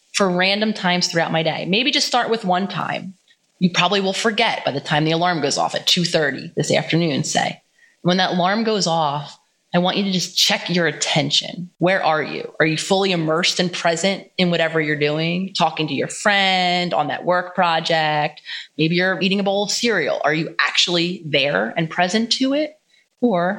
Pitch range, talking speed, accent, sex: 155-195 Hz, 200 wpm, American, female